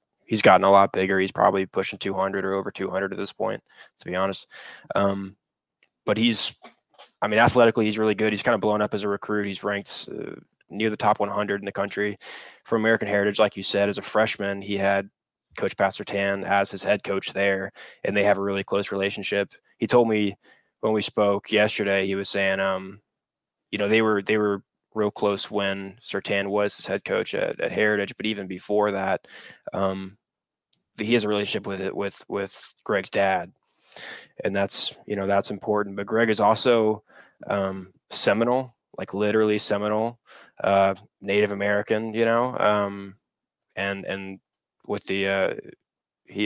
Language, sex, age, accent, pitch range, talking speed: English, male, 20-39, American, 100-105 Hz, 180 wpm